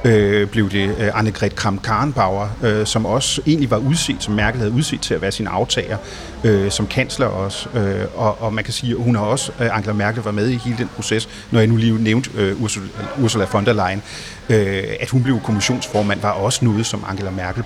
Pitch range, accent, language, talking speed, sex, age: 105-130 Hz, native, Danish, 195 wpm, male, 30-49